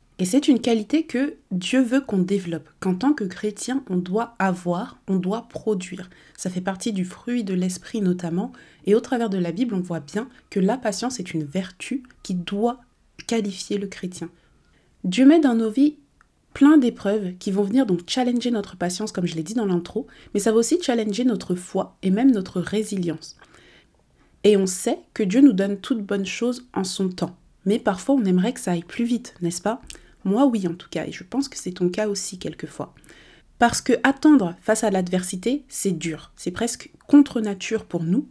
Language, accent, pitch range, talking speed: French, French, 185-245 Hz, 205 wpm